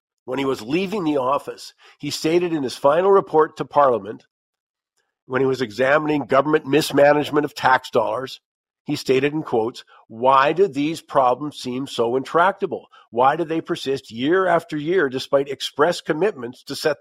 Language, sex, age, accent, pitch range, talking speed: English, male, 50-69, American, 130-160 Hz, 160 wpm